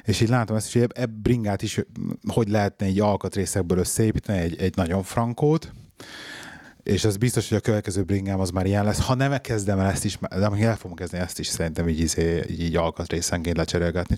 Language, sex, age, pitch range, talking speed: Hungarian, male, 30-49, 80-105 Hz, 205 wpm